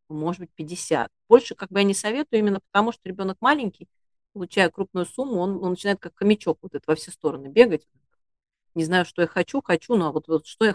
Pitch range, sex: 155-200 Hz, female